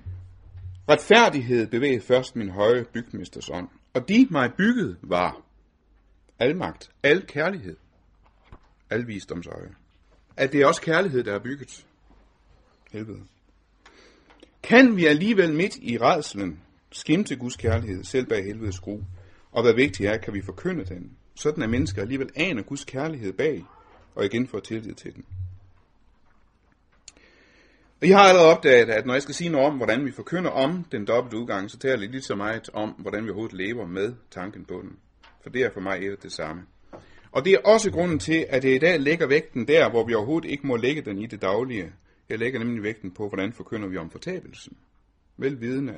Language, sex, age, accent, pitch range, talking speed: Danish, male, 60-79, native, 95-140 Hz, 175 wpm